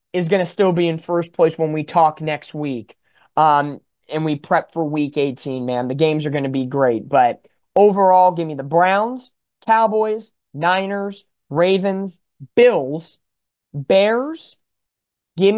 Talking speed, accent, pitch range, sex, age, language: 155 wpm, American, 155-205 Hz, male, 20-39, English